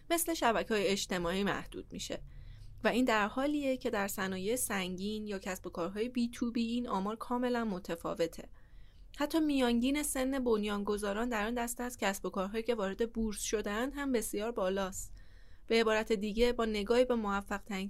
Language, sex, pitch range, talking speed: Persian, female, 190-245 Hz, 165 wpm